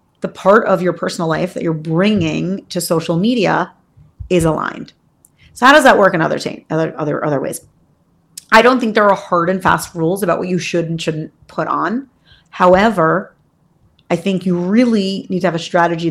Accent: American